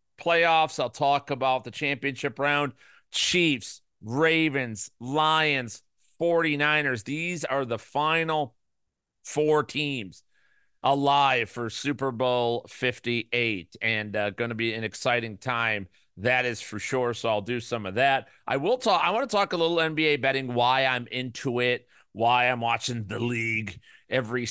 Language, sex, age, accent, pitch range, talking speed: English, male, 40-59, American, 120-145 Hz, 145 wpm